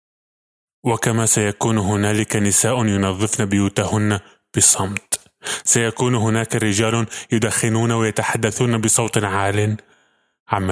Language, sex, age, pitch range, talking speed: Arabic, male, 20-39, 100-115 Hz, 85 wpm